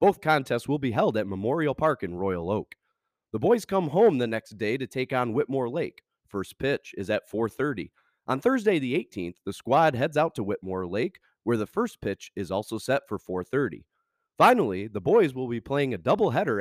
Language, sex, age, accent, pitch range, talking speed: English, male, 30-49, American, 105-150 Hz, 200 wpm